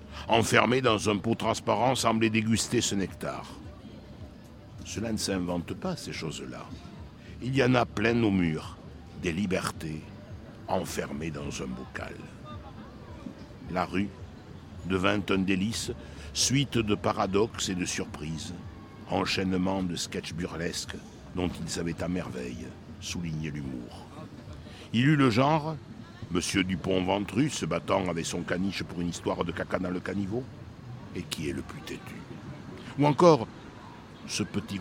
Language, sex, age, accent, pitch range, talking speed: French, male, 60-79, French, 90-110 Hz, 135 wpm